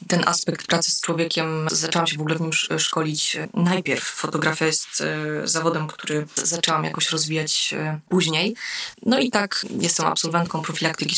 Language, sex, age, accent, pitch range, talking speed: Polish, female, 20-39, native, 155-170 Hz, 145 wpm